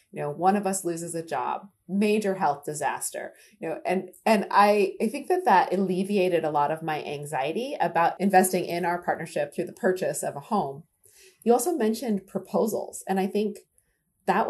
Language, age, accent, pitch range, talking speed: English, 30-49, American, 160-195 Hz, 185 wpm